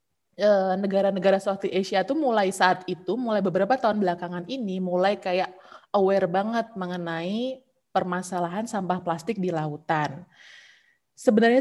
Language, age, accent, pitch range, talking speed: Indonesian, 20-39, native, 170-195 Hz, 120 wpm